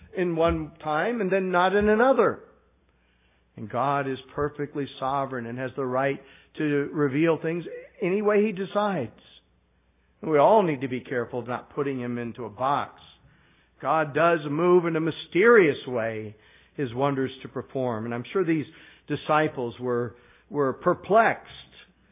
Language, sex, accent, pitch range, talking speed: English, male, American, 130-180 Hz, 150 wpm